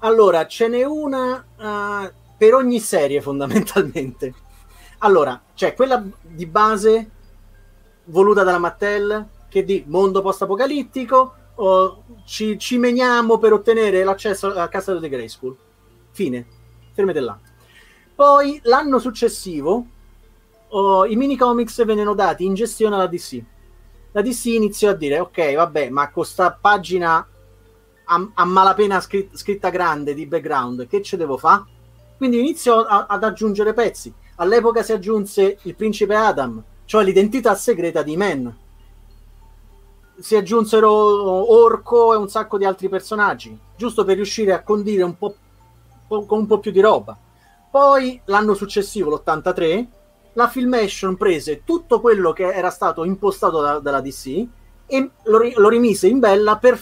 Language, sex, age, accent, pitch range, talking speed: Italian, male, 30-49, native, 165-220 Hz, 140 wpm